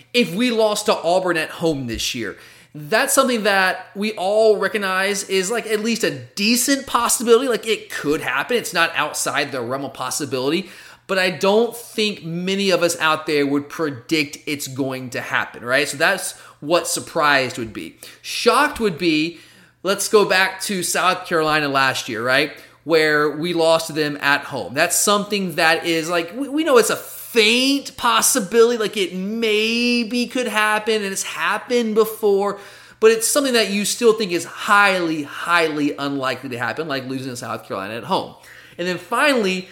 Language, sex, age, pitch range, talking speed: English, male, 30-49, 155-220 Hz, 175 wpm